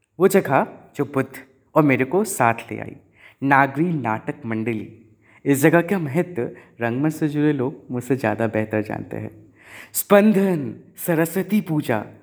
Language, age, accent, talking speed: Hindi, 30-49, native, 135 wpm